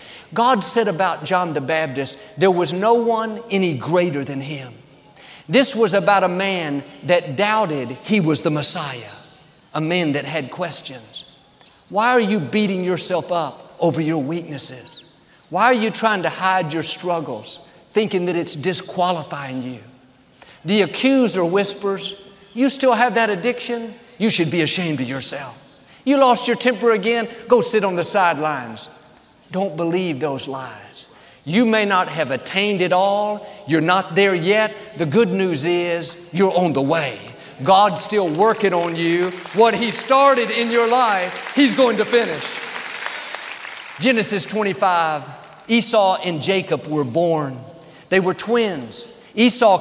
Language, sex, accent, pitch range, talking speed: English, male, American, 160-220 Hz, 150 wpm